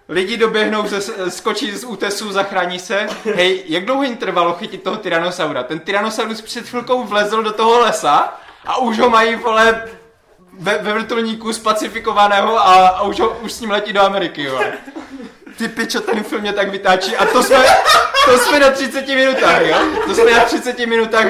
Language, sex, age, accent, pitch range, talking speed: Czech, male, 20-39, native, 195-235 Hz, 170 wpm